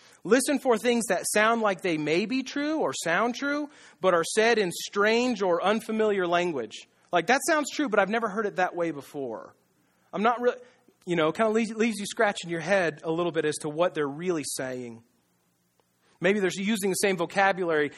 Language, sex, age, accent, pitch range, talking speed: English, male, 30-49, American, 155-210 Hz, 200 wpm